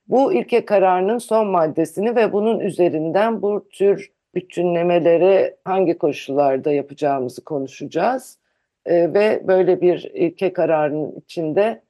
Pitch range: 155-205 Hz